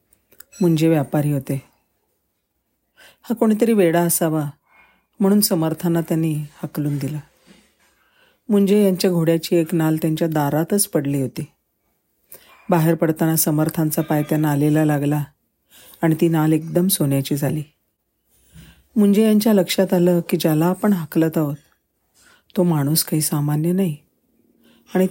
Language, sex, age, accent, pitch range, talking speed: Marathi, female, 40-59, native, 150-180 Hz, 115 wpm